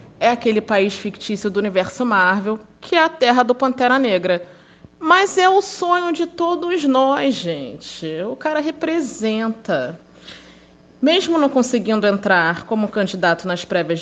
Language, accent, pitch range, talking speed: Portuguese, Brazilian, 190-255 Hz, 140 wpm